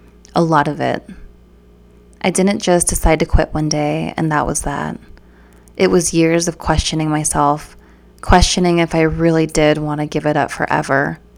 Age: 20-39